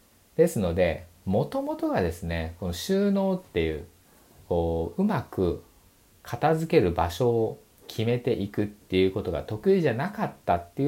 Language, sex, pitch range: Japanese, male, 90-150 Hz